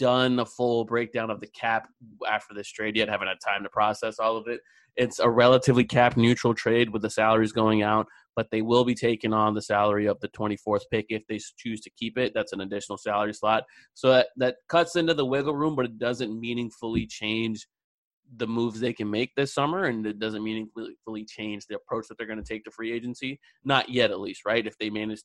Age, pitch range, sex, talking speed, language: 20-39, 105-125 Hz, male, 230 wpm, English